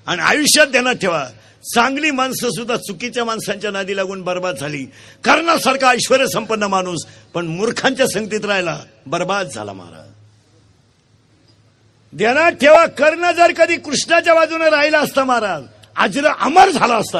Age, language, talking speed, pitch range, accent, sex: 50-69, Marathi, 60 wpm, 170-280 Hz, native, male